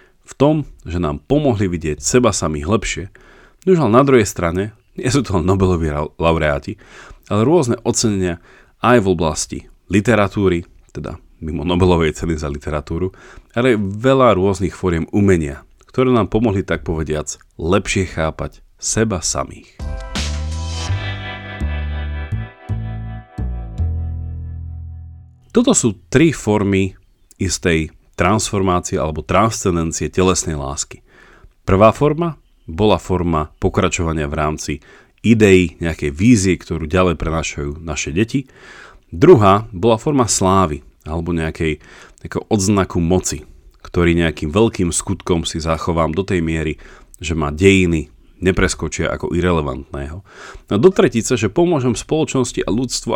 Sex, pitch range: male, 80-105 Hz